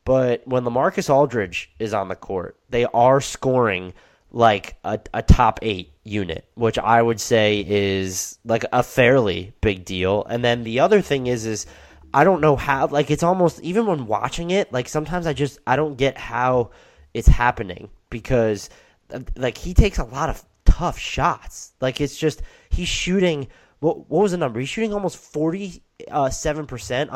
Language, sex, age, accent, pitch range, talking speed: English, male, 20-39, American, 105-140 Hz, 170 wpm